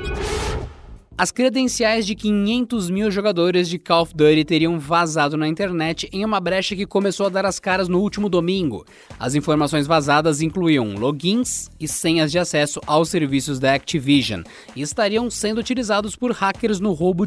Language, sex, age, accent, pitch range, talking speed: Portuguese, male, 20-39, Brazilian, 145-185 Hz, 165 wpm